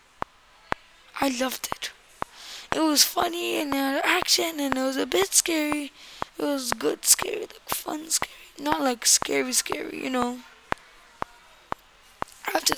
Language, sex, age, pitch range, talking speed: English, female, 10-29, 260-315 Hz, 135 wpm